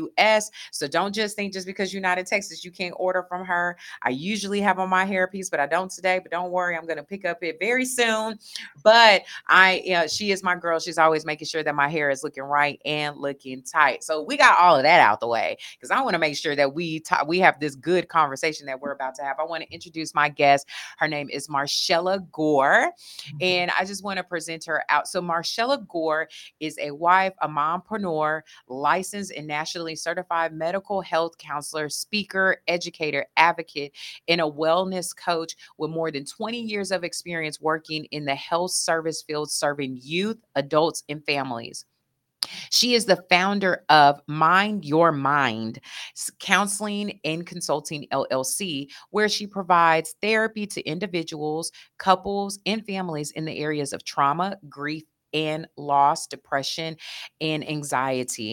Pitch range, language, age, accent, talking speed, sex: 150-185 Hz, English, 30-49, American, 180 wpm, female